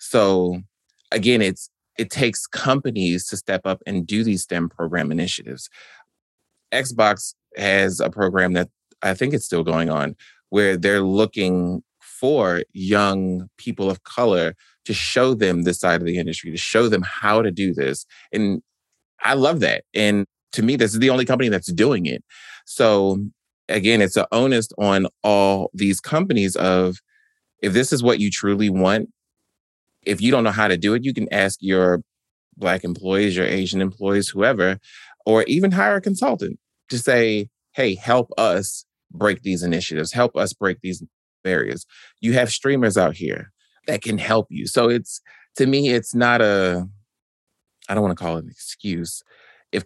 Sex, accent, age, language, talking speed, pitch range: male, American, 30-49, English, 170 wpm, 90-110 Hz